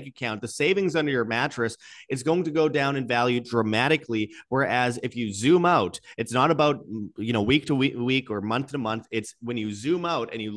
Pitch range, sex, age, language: 115-145 Hz, male, 30-49, English